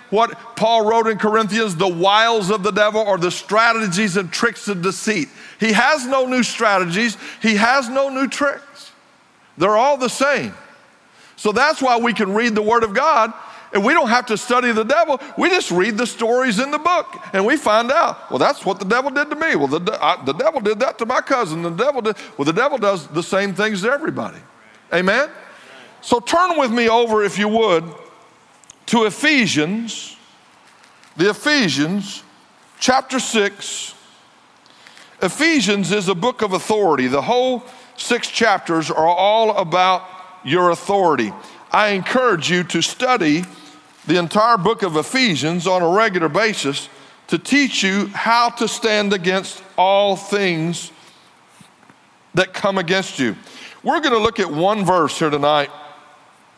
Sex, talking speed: male, 165 wpm